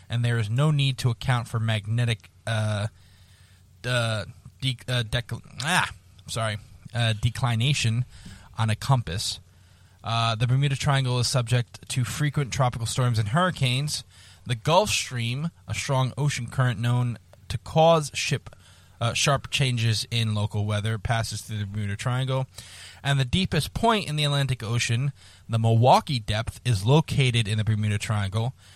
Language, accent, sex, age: English, American, male, 20-39